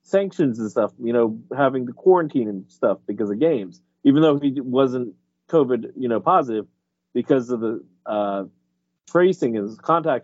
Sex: male